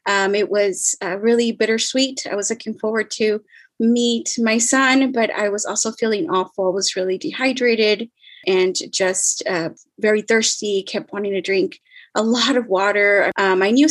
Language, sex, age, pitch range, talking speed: English, female, 20-39, 200-245 Hz, 175 wpm